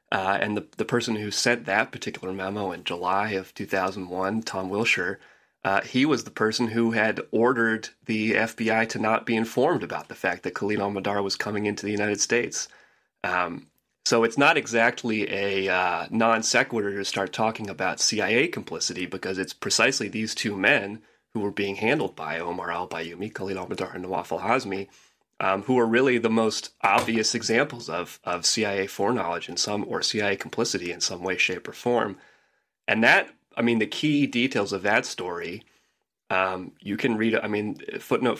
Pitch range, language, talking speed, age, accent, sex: 95-115 Hz, English, 180 wpm, 30-49, American, male